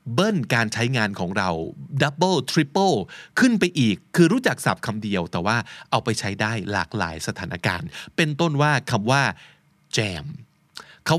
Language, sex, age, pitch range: Thai, male, 20-39, 110-160 Hz